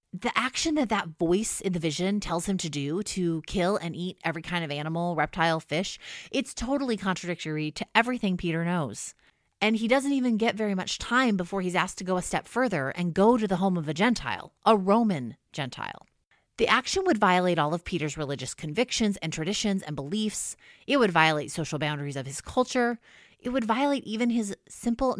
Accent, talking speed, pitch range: American, 200 wpm, 155-215 Hz